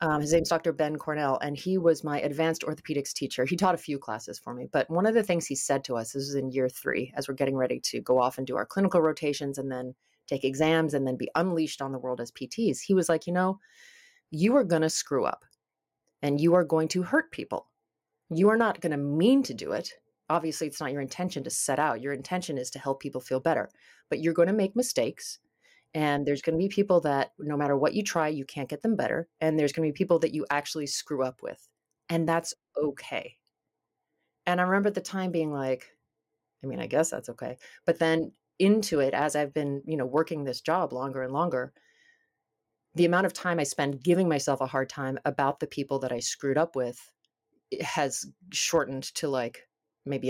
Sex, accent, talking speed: female, American, 230 wpm